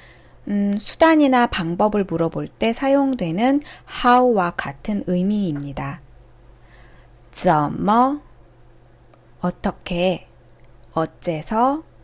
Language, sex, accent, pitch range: Korean, female, native, 135-230 Hz